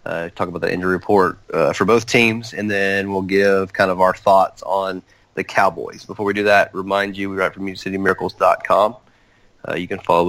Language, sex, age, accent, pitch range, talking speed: English, male, 30-49, American, 95-115 Hz, 215 wpm